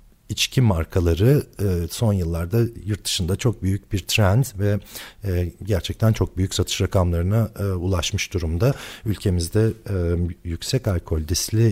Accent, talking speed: native, 110 wpm